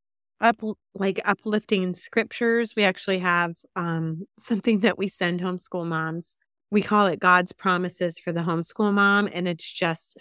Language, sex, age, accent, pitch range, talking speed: English, female, 30-49, American, 160-205 Hz, 155 wpm